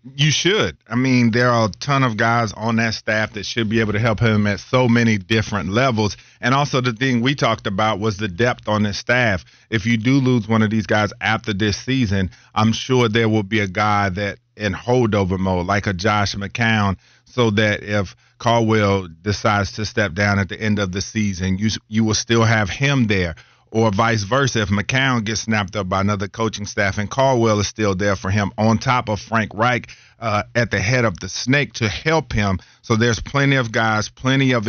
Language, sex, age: English, male, 40-59